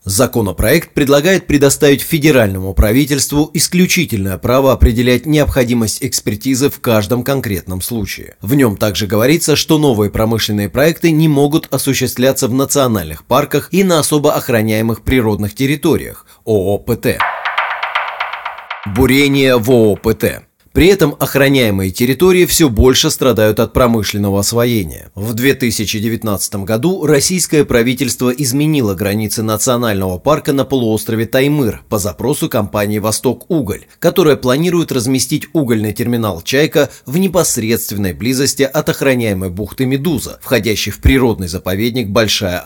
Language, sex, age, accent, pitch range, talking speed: Russian, male, 30-49, native, 105-145 Hz, 115 wpm